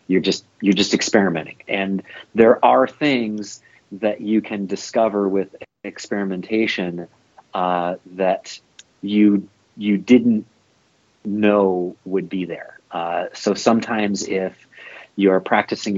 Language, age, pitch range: English, 30-49, 95-120 Hz